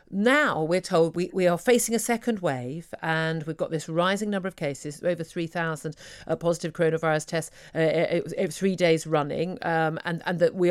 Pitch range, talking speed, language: 160-190 Hz, 220 wpm, English